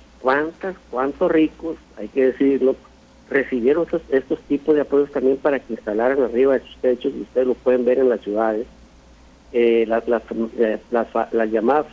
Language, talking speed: Spanish, 175 wpm